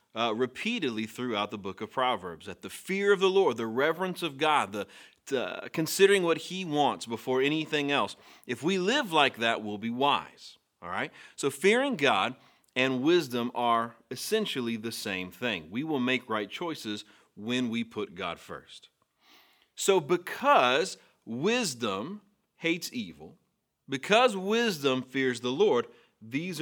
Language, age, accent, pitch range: English, 30-49, American, 115-165 Hz